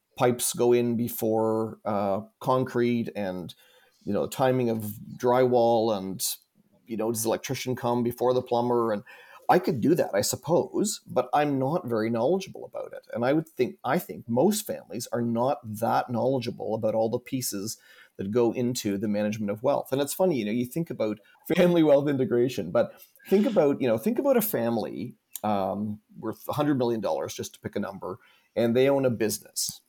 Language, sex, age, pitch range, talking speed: English, male, 40-59, 110-140 Hz, 185 wpm